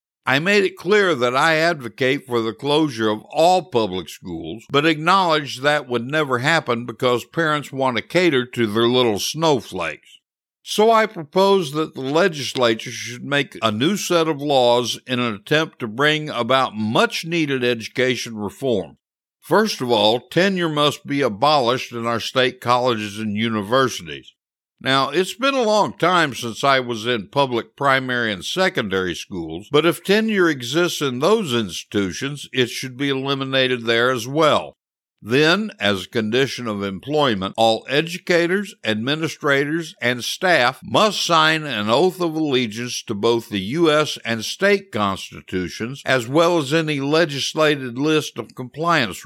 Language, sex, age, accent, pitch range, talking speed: English, male, 60-79, American, 115-160 Hz, 150 wpm